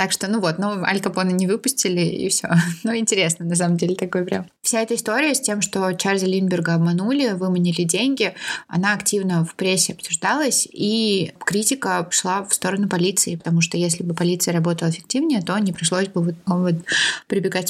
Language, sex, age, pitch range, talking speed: Russian, female, 20-39, 175-210 Hz, 180 wpm